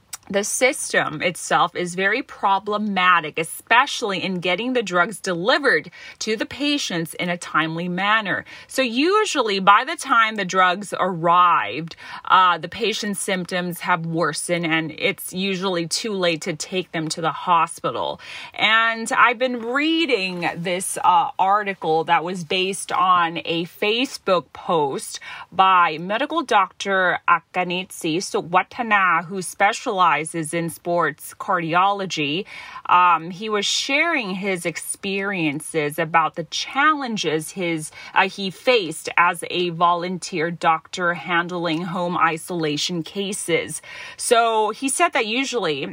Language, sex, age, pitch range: Thai, female, 30-49, 170-210 Hz